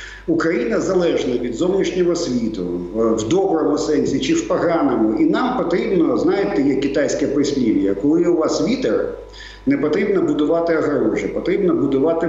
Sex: male